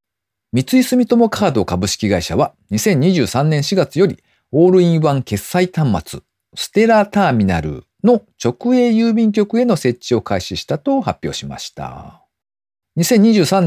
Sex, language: male, Japanese